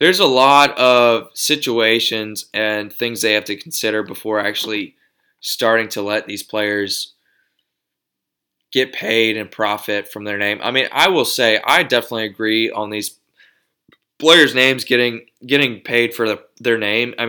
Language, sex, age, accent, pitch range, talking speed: English, male, 20-39, American, 110-140 Hz, 155 wpm